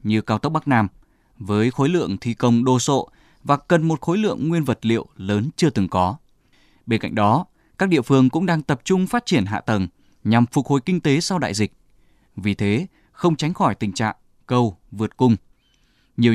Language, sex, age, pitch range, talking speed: Vietnamese, male, 20-39, 110-160 Hz, 210 wpm